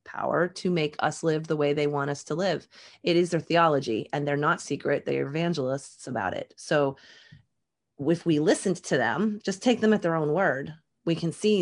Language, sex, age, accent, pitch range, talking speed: English, female, 30-49, American, 140-175 Hz, 205 wpm